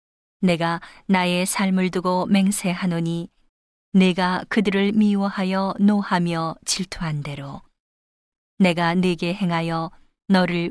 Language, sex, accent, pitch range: Korean, female, native, 165-195 Hz